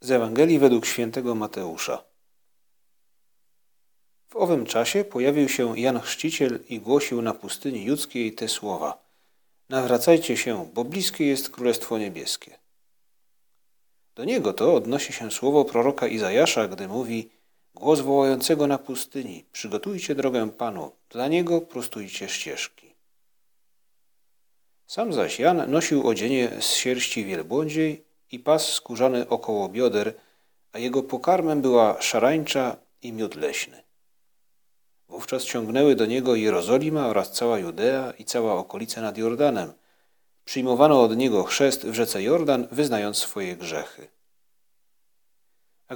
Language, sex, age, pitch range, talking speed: Polish, male, 40-59, 115-145 Hz, 120 wpm